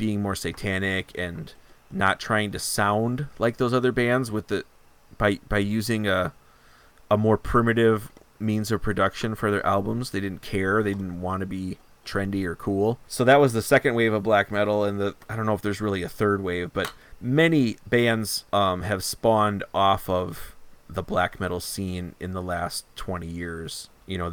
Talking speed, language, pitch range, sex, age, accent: 190 wpm, English, 90-110 Hz, male, 30-49, American